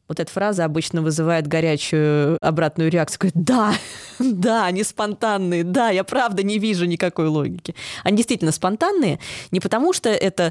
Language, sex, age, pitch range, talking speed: Russian, female, 20-39, 160-215 Hz, 155 wpm